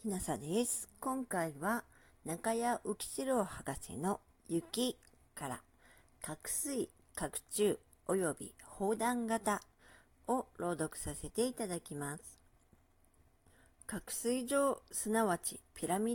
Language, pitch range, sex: Japanese, 170-245 Hz, female